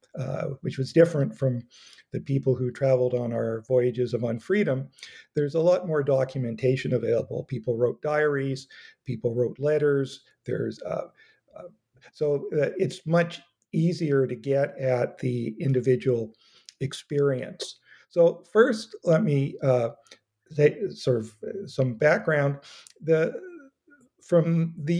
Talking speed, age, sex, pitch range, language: 125 wpm, 50-69, male, 130-165 Hz, English